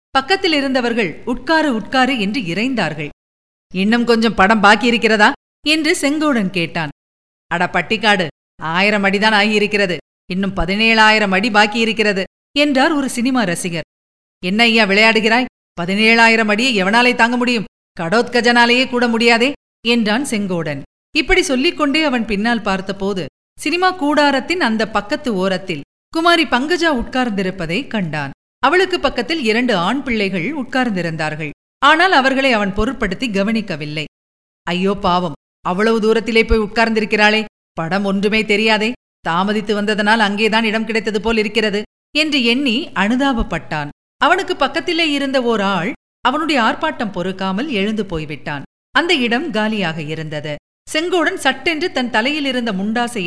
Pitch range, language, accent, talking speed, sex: 190-260 Hz, Tamil, native, 115 wpm, female